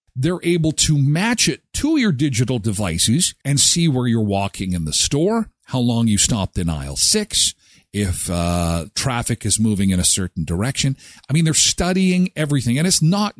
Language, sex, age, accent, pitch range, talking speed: English, male, 50-69, American, 100-160 Hz, 185 wpm